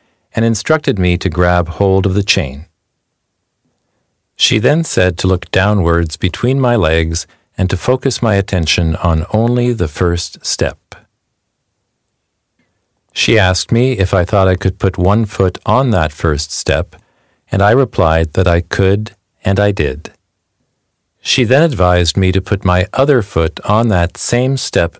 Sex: male